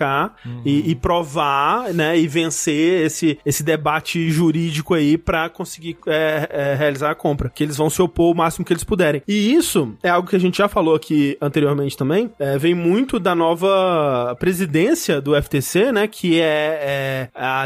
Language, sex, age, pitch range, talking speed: Portuguese, male, 20-39, 155-190 Hz, 165 wpm